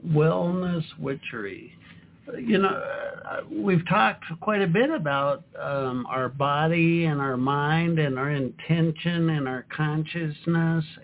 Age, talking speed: 60-79, 120 wpm